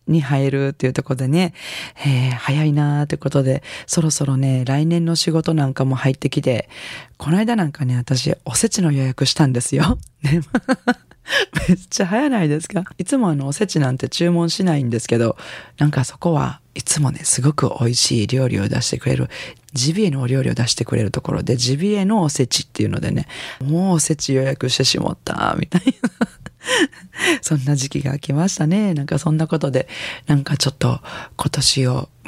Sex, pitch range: female, 135-165 Hz